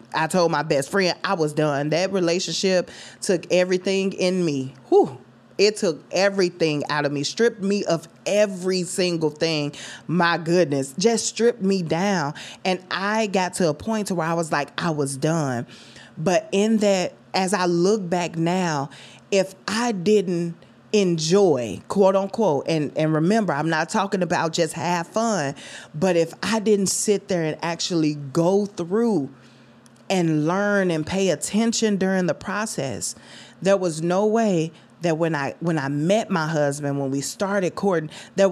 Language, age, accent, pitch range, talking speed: English, 20-39, American, 155-200 Hz, 165 wpm